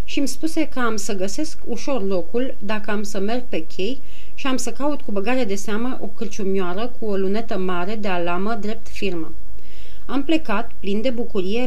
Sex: female